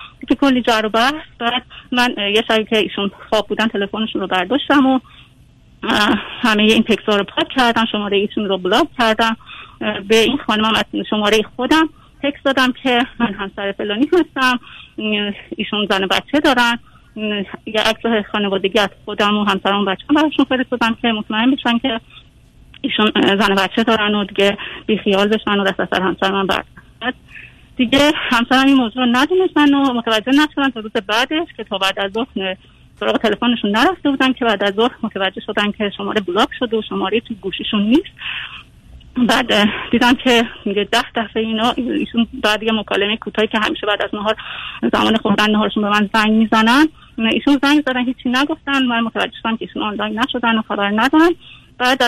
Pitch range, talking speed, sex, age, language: 210-260 Hz, 175 wpm, female, 30-49, Persian